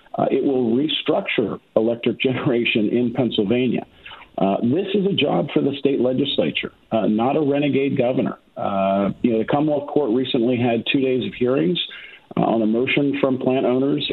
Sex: male